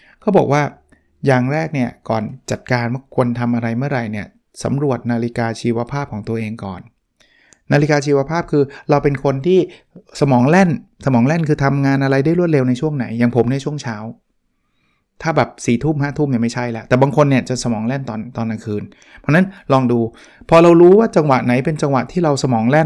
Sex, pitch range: male, 120-145 Hz